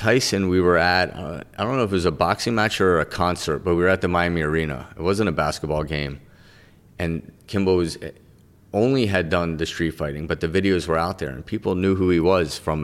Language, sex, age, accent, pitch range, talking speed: English, male, 30-49, American, 80-95 Hz, 235 wpm